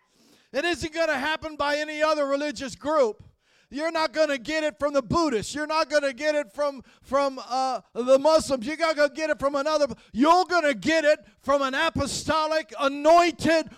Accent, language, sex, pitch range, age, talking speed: American, English, male, 190-305 Hz, 50-69, 200 wpm